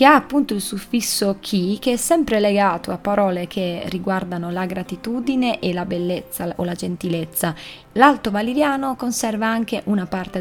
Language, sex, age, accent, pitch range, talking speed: Italian, female, 20-39, native, 185-225 Hz, 160 wpm